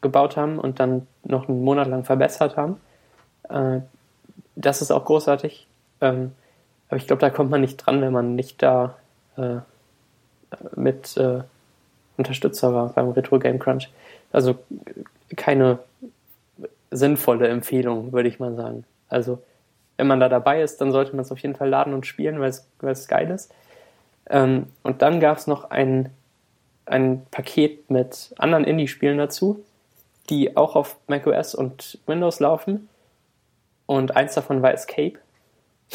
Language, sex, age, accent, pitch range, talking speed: German, male, 20-39, German, 125-140 Hz, 140 wpm